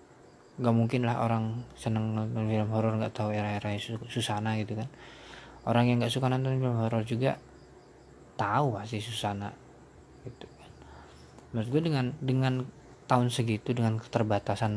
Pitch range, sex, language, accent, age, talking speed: 110-130 Hz, male, Indonesian, native, 20-39, 140 wpm